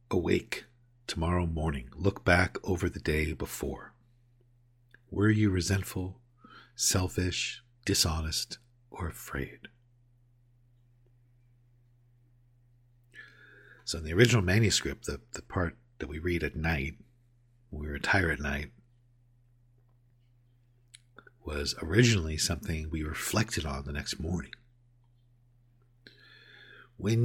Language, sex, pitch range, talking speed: English, male, 85-120 Hz, 95 wpm